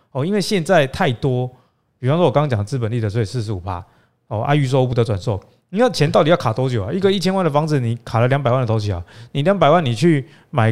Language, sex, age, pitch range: Chinese, male, 20-39, 115-155 Hz